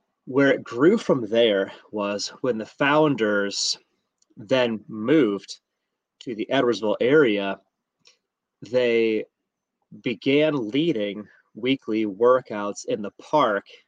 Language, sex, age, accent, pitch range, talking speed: English, male, 30-49, American, 110-130 Hz, 100 wpm